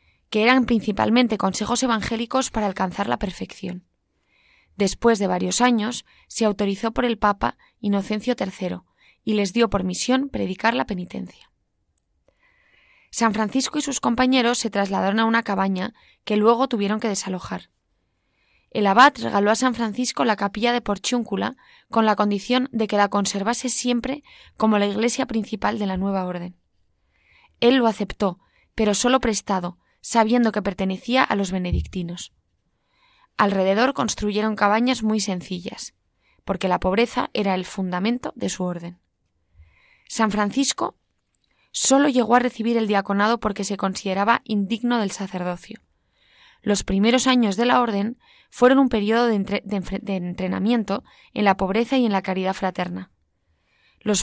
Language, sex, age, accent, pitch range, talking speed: Spanish, female, 20-39, Spanish, 190-235 Hz, 145 wpm